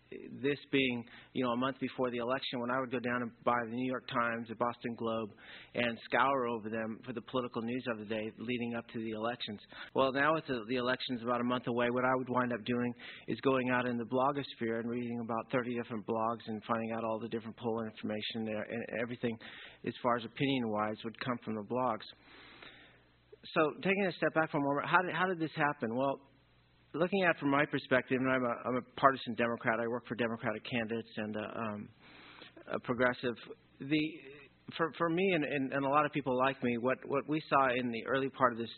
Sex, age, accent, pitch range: male, 40-59, American, 115-135 Hz